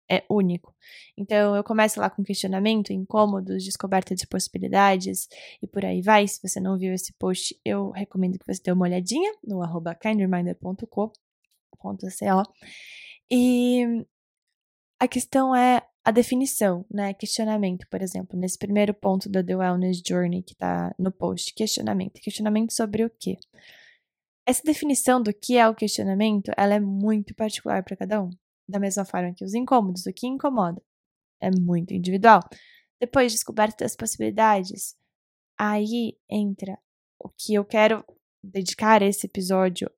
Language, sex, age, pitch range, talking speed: Portuguese, female, 10-29, 185-220 Hz, 145 wpm